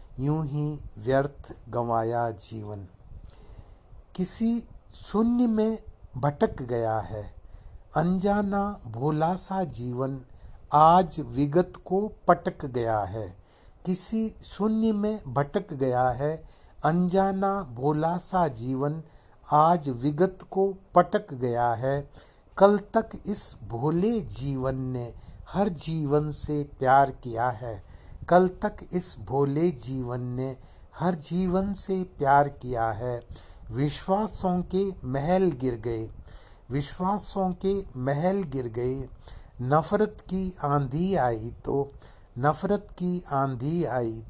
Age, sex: 60-79, male